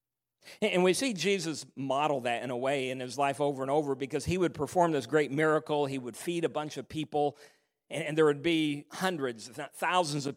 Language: English